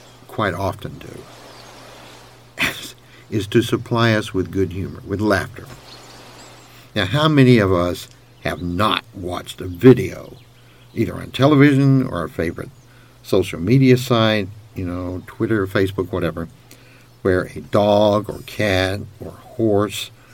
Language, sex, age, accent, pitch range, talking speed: English, male, 60-79, American, 95-125 Hz, 125 wpm